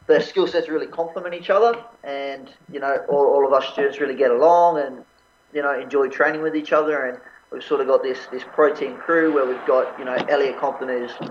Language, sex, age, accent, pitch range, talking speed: English, male, 20-39, Australian, 140-225 Hz, 230 wpm